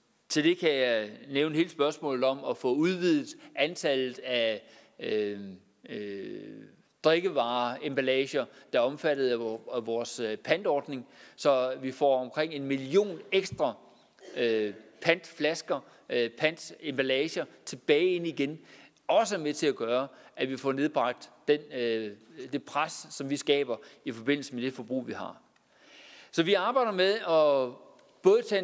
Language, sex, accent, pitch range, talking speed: Danish, male, native, 130-170 Hz, 135 wpm